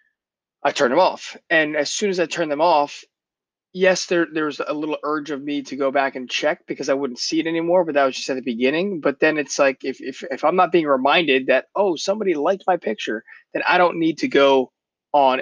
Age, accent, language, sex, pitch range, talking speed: 20-39, American, English, male, 130-170 Hz, 245 wpm